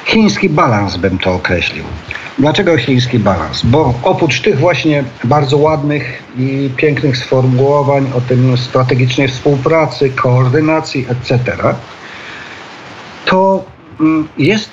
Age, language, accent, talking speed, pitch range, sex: 50-69, Polish, native, 100 wpm, 130-160 Hz, male